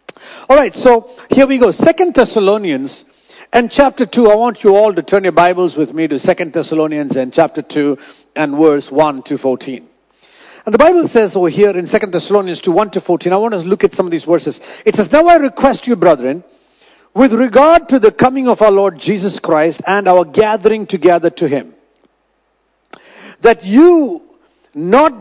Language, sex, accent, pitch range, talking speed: English, male, Indian, 175-260 Hz, 195 wpm